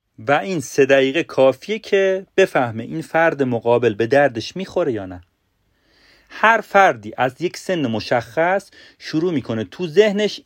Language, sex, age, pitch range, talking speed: Persian, male, 40-59, 115-190 Hz, 145 wpm